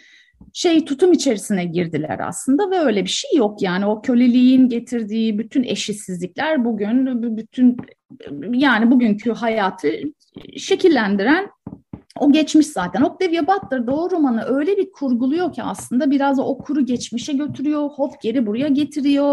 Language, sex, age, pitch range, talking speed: Turkish, female, 30-49, 220-295 Hz, 125 wpm